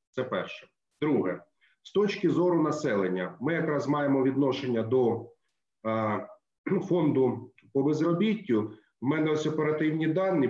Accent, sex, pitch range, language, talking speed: native, male, 125-165 Hz, Ukrainian, 120 wpm